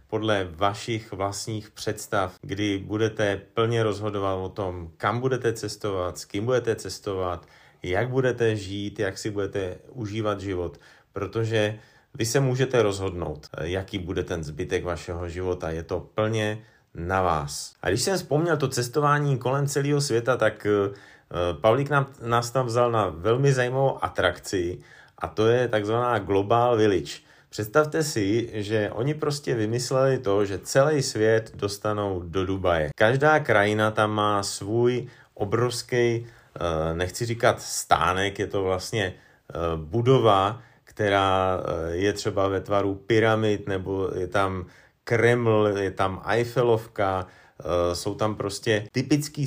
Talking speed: 130 wpm